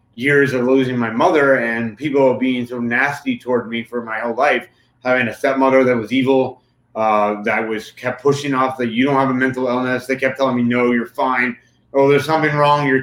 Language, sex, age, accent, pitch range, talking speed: English, male, 30-49, American, 125-140 Hz, 215 wpm